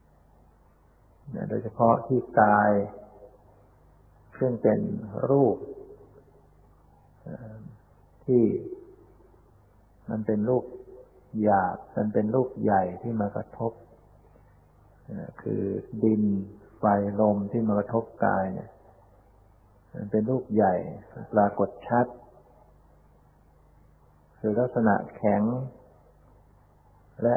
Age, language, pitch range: 60-79, Thai, 100-115 Hz